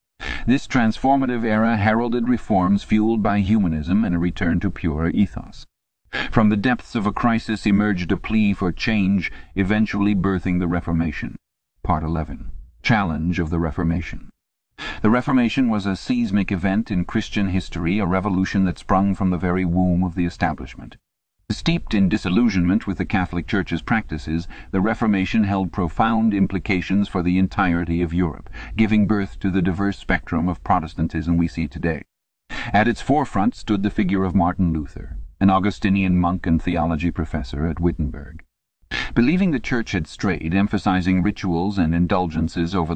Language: English